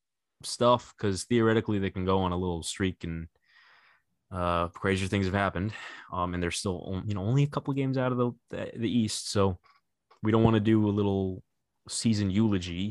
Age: 20-39